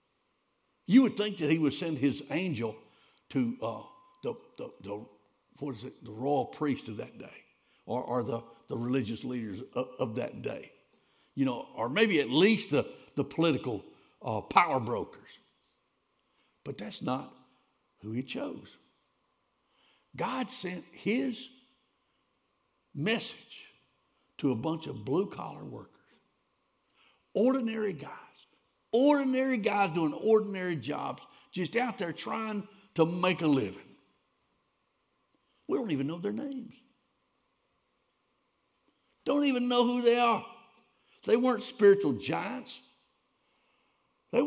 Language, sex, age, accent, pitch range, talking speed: English, male, 60-79, American, 155-245 Hz, 125 wpm